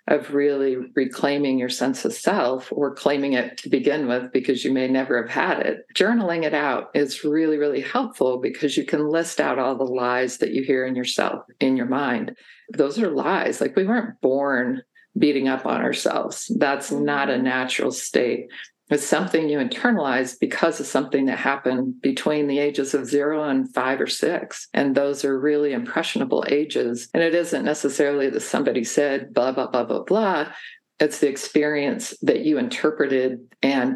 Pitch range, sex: 130-155 Hz, female